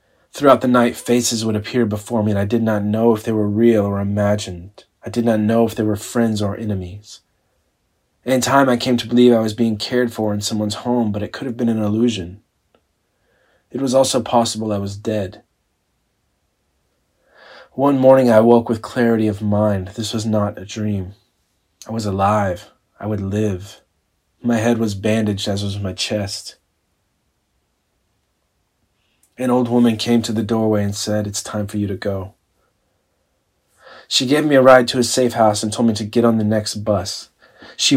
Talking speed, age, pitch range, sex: 185 wpm, 30-49, 100-115 Hz, male